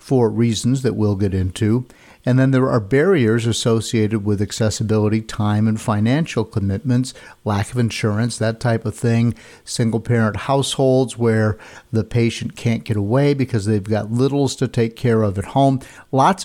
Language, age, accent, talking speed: English, 50-69, American, 165 wpm